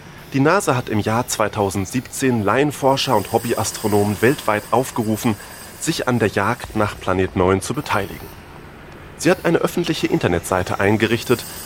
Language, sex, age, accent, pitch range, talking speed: German, male, 30-49, German, 95-125 Hz, 135 wpm